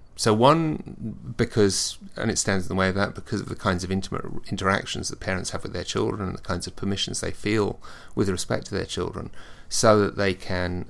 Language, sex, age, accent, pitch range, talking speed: English, male, 30-49, British, 90-110 Hz, 220 wpm